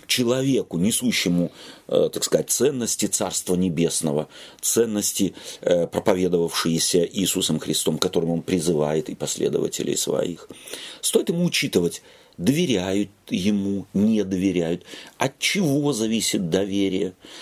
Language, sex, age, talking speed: Russian, male, 40-59, 100 wpm